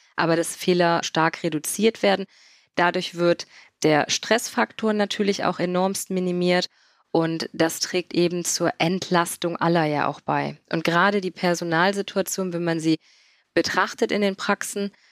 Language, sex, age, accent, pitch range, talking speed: German, female, 20-39, German, 165-195 Hz, 140 wpm